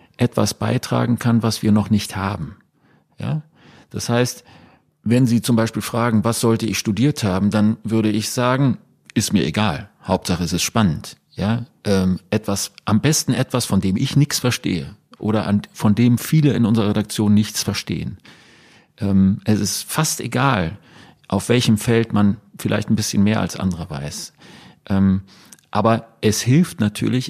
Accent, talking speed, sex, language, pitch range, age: German, 165 wpm, male, German, 105-130 Hz, 40-59